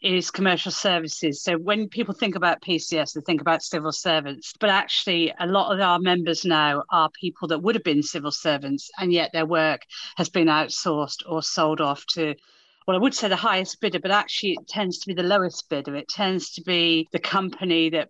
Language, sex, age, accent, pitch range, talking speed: English, female, 40-59, British, 160-195 Hz, 210 wpm